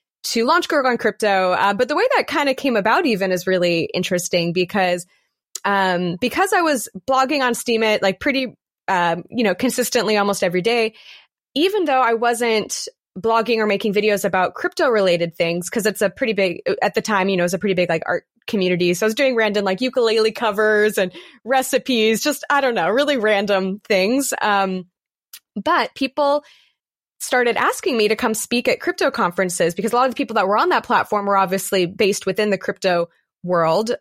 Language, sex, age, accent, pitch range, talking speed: English, female, 20-39, American, 195-265 Hz, 195 wpm